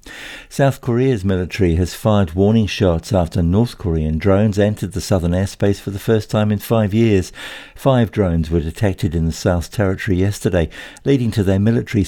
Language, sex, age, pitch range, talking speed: English, male, 60-79, 90-110 Hz, 175 wpm